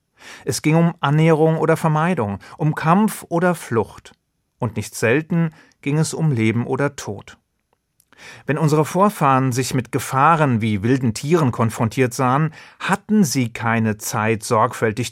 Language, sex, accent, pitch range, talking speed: German, male, German, 120-165 Hz, 140 wpm